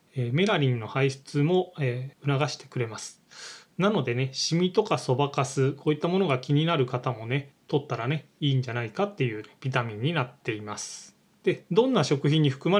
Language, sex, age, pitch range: Japanese, male, 20-39, 125-170 Hz